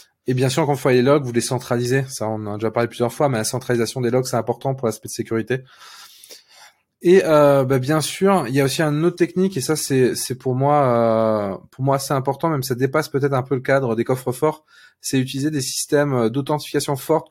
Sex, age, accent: male, 20-39, French